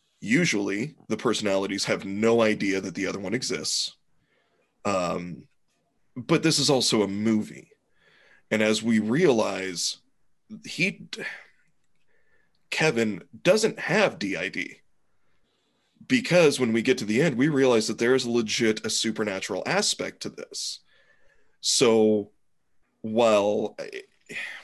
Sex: male